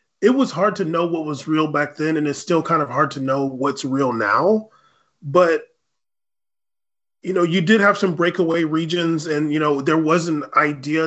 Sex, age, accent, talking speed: male, 30-49, American, 200 wpm